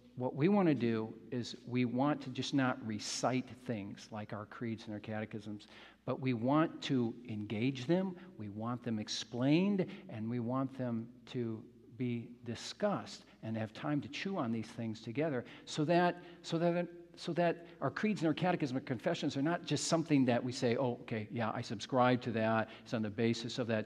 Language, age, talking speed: English, 50-69, 200 wpm